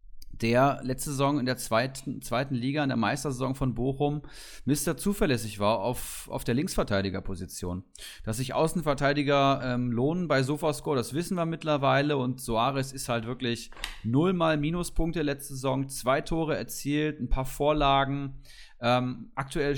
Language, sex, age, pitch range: German, male, 30-49, 120-150 Hz